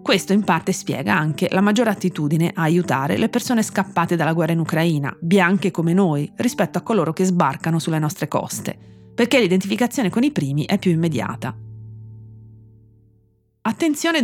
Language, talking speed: Italian, 155 wpm